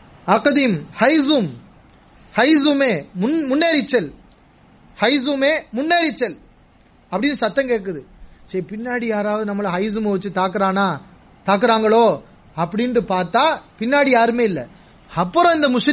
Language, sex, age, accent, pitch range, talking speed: English, male, 30-49, Indian, 185-235 Hz, 70 wpm